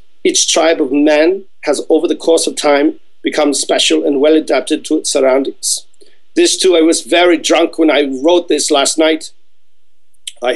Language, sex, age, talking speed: English, male, 40-59, 175 wpm